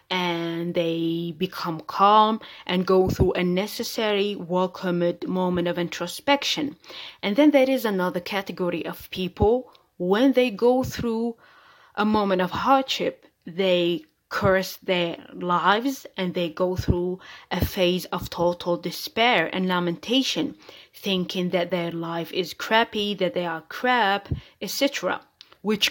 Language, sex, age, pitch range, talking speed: English, female, 20-39, 180-240 Hz, 130 wpm